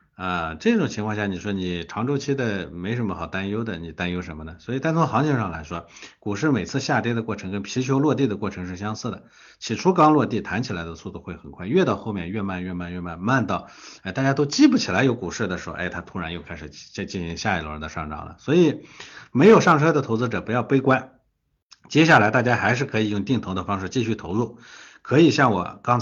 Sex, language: male, Chinese